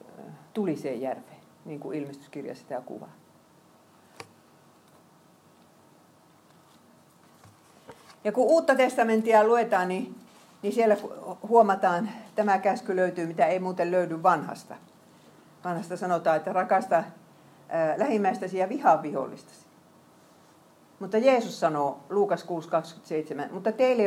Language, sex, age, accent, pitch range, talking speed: Finnish, female, 50-69, native, 160-215 Hz, 95 wpm